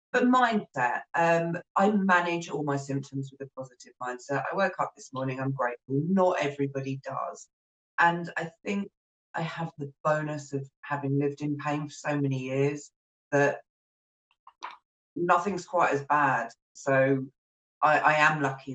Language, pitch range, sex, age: English, 130-155 Hz, female, 40-59